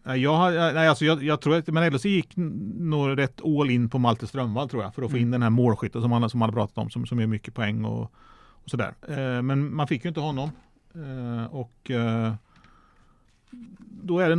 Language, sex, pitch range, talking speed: Swedish, male, 120-150 Hz, 205 wpm